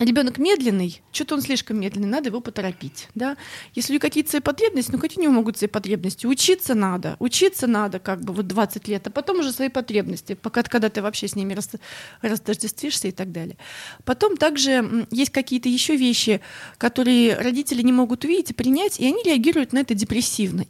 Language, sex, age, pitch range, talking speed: Russian, female, 30-49, 210-265 Hz, 195 wpm